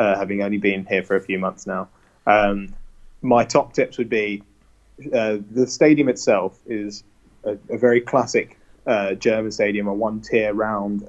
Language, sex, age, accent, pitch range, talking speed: English, male, 20-39, British, 100-115 Hz, 170 wpm